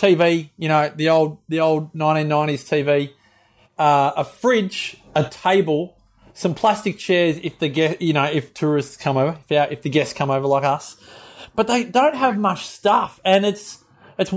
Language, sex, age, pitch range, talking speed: English, male, 30-49, 145-185 Hz, 185 wpm